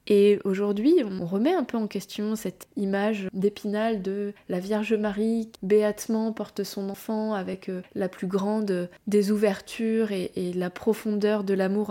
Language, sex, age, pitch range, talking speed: French, female, 20-39, 195-225 Hz, 155 wpm